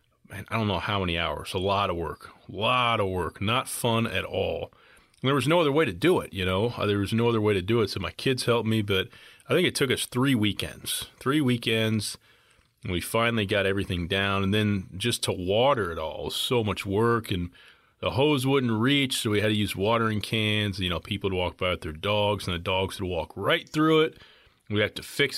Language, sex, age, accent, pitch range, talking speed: English, male, 30-49, American, 90-115 Hz, 240 wpm